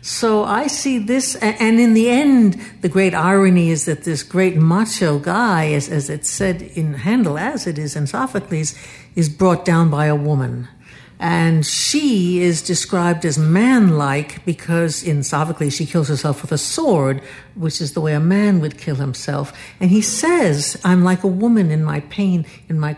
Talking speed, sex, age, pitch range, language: 185 wpm, female, 60-79, 150-205 Hz, English